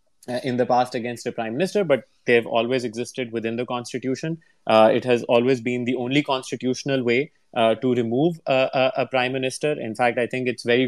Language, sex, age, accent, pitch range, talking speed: English, male, 30-49, Indian, 120-140 Hz, 200 wpm